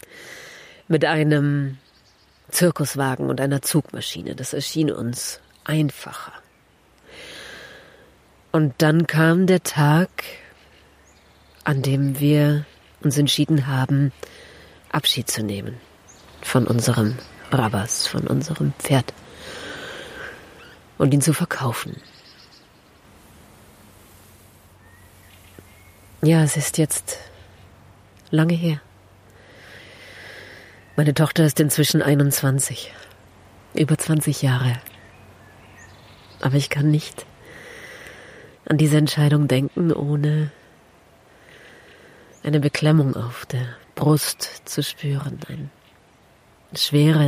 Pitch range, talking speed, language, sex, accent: 110-155 Hz, 85 wpm, German, female, German